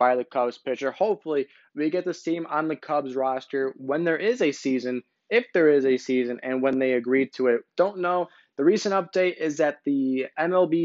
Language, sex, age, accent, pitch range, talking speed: English, male, 20-39, American, 135-165 Hz, 210 wpm